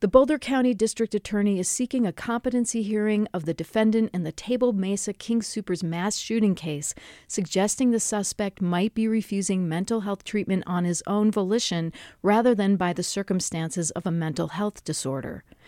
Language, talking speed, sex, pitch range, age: English, 170 wpm, female, 175-215 Hz, 40-59